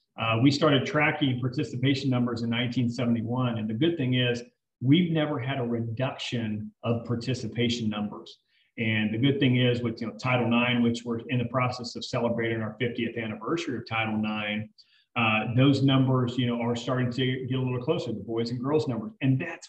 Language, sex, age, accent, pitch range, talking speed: English, male, 40-59, American, 120-140 Hz, 180 wpm